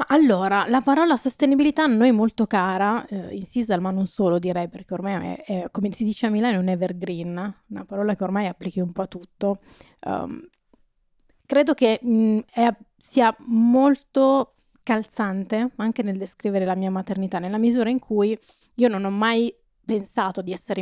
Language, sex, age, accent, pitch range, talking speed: Italian, female, 20-39, native, 190-230 Hz, 175 wpm